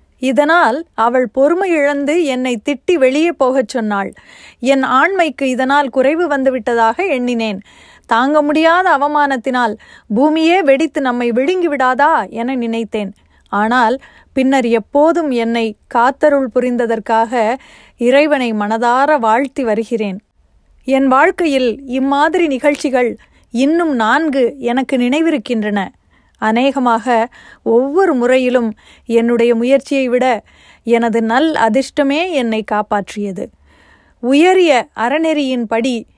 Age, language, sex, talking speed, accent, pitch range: 30-49, Tamil, female, 90 wpm, native, 230-285 Hz